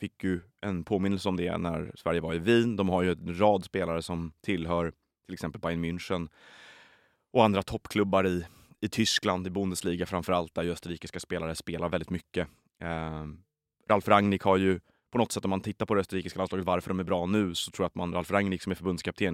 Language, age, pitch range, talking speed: Swedish, 30-49, 85-100 Hz, 210 wpm